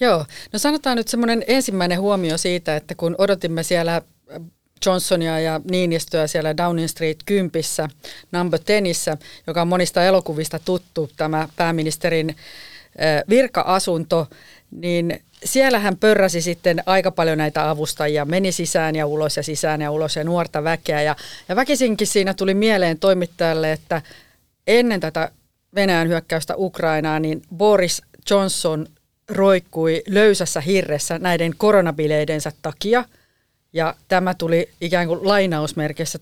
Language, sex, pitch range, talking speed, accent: Finnish, female, 155-185 Hz, 125 wpm, native